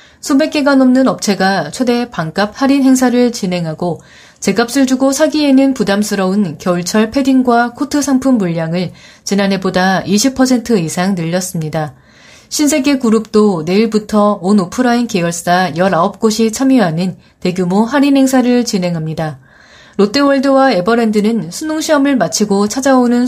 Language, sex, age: Korean, female, 30-49